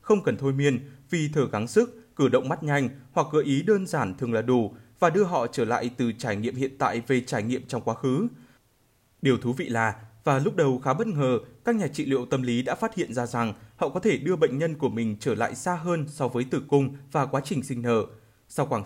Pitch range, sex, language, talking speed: 120-160 Hz, male, Vietnamese, 255 wpm